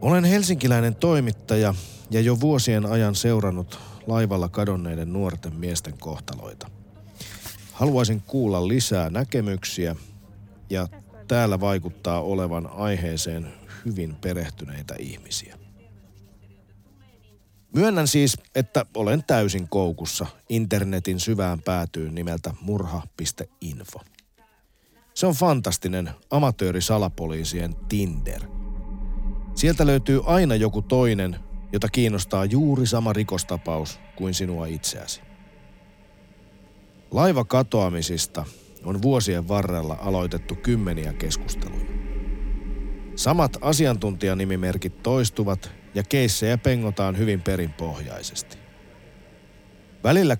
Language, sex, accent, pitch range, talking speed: Finnish, male, native, 90-115 Hz, 85 wpm